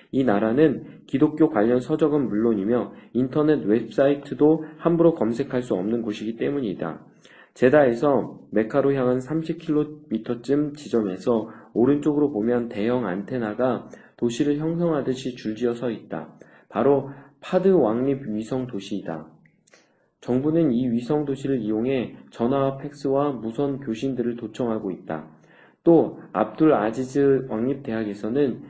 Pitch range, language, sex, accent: 110-145 Hz, Korean, male, native